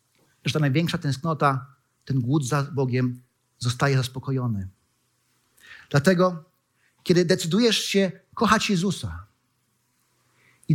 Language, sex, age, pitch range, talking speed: Polish, male, 40-59, 125-175 Hz, 95 wpm